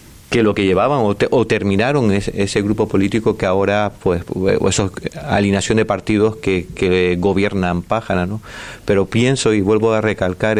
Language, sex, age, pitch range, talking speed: Spanish, male, 30-49, 95-110 Hz, 175 wpm